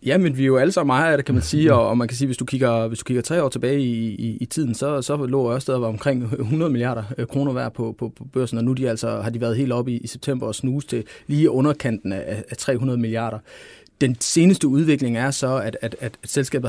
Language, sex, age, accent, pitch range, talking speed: Danish, male, 30-49, native, 115-135 Hz, 255 wpm